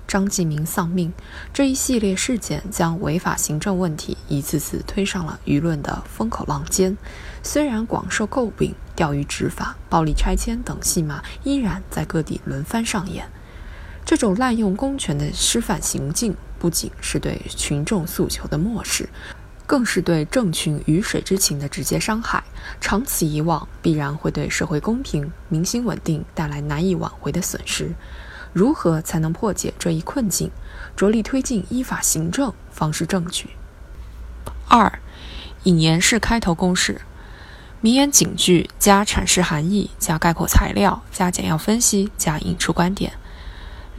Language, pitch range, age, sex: Chinese, 155-215 Hz, 20-39, female